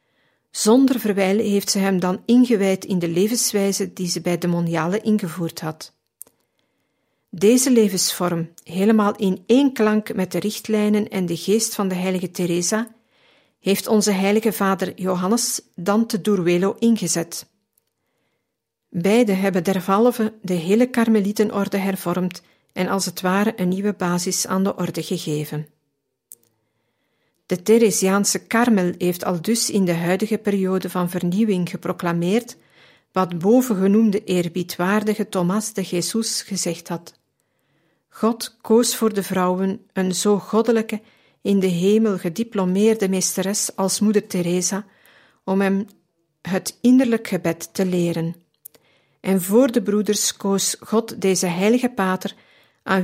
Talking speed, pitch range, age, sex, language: 130 wpm, 180-215 Hz, 50-69, female, Dutch